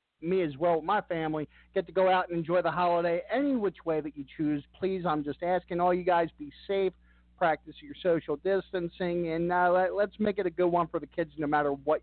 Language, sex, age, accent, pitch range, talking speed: English, male, 50-69, American, 150-185 Hz, 240 wpm